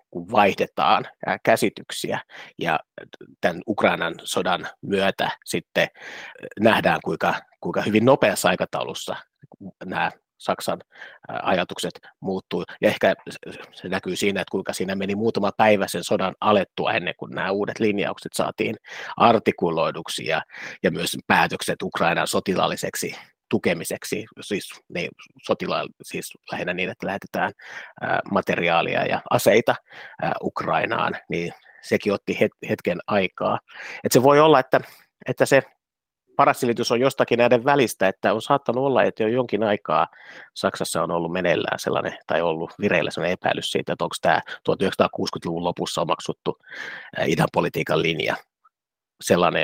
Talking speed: 130 wpm